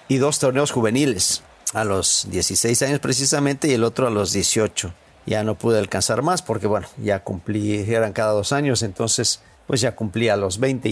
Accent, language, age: Mexican, English, 50-69